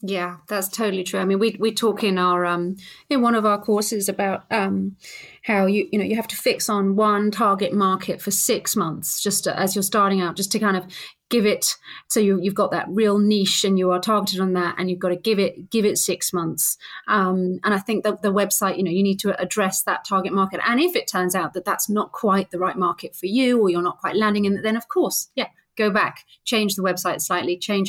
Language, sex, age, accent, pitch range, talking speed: English, female, 30-49, British, 180-210 Hz, 250 wpm